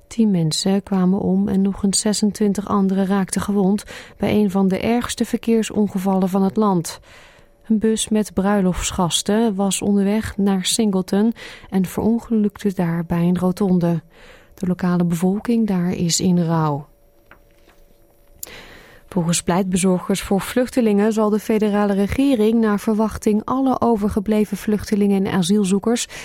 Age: 30-49